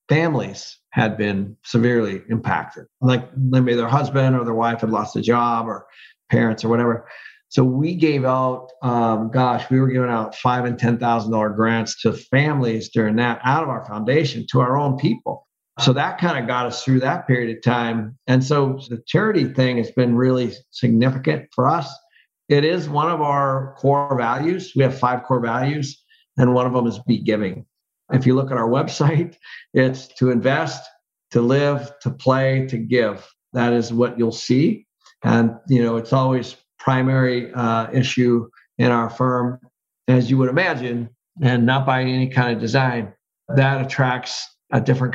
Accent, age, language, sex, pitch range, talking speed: American, 50-69, English, male, 115-135 Hz, 175 wpm